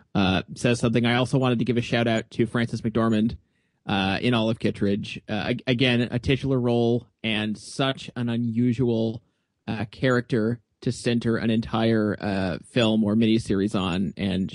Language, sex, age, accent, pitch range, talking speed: English, male, 30-49, American, 110-130 Hz, 160 wpm